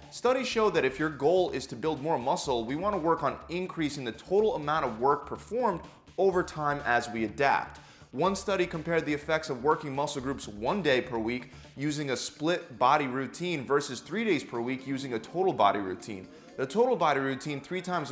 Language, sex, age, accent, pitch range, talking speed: English, male, 20-39, American, 125-175 Hz, 205 wpm